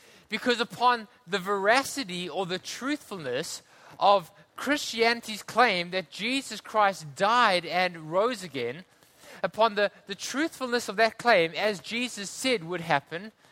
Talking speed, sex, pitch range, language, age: 130 wpm, male, 175-235 Hz, English, 20-39